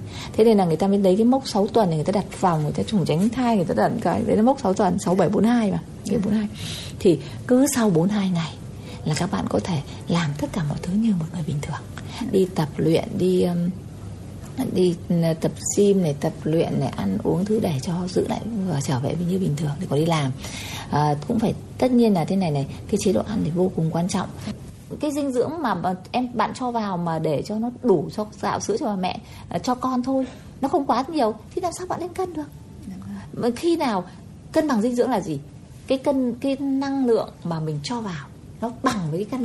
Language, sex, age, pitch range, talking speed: Vietnamese, female, 20-39, 165-245 Hz, 240 wpm